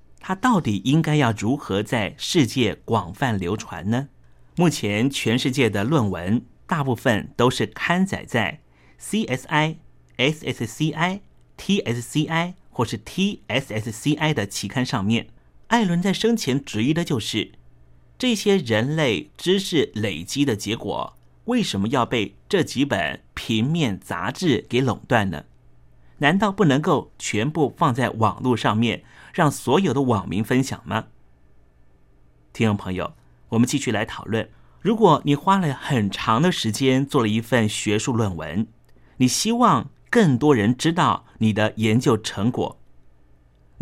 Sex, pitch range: male, 105-150 Hz